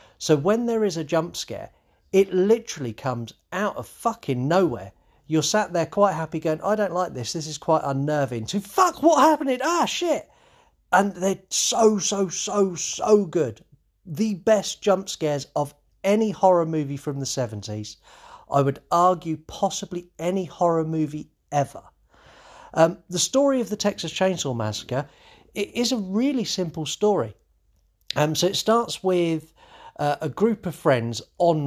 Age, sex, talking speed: 40-59, male, 165 wpm